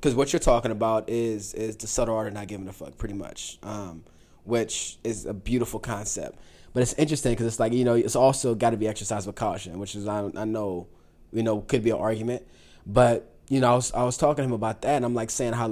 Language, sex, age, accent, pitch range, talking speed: English, male, 20-39, American, 100-120 Hz, 255 wpm